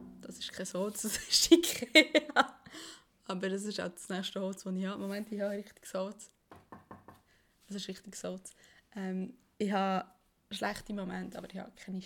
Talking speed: 175 wpm